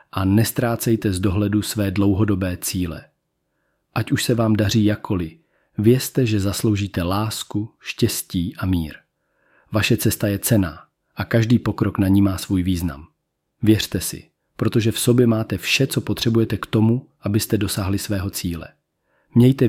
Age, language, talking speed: 40-59, Czech, 145 wpm